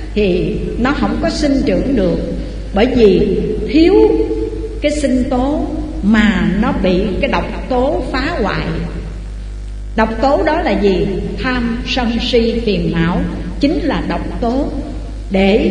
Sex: female